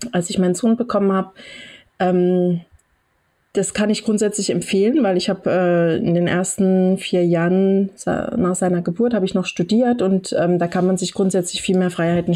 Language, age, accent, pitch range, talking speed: German, 30-49, German, 170-200 Hz, 175 wpm